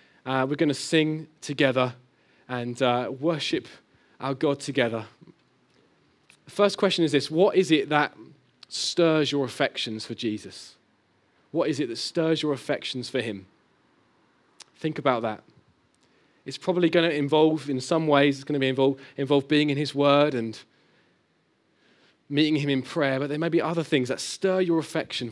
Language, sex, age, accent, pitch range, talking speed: English, male, 20-39, British, 125-155 Hz, 165 wpm